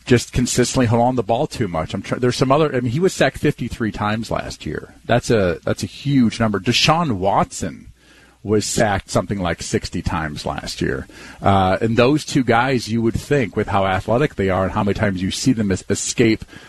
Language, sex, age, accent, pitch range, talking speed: English, male, 40-59, American, 105-125 Hz, 215 wpm